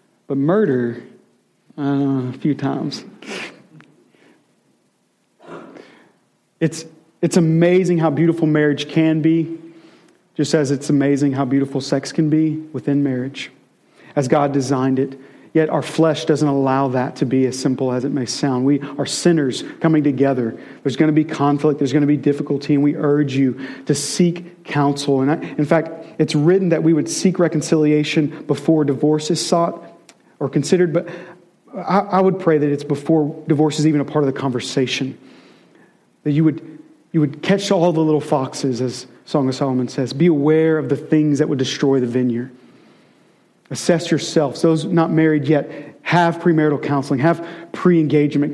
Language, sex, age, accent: English, male, 40-59, American